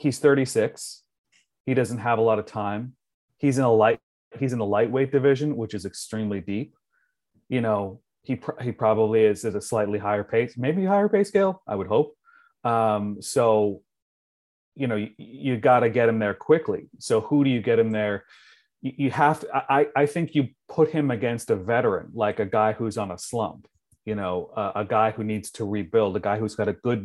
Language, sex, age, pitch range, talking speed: English, male, 30-49, 105-135 Hz, 210 wpm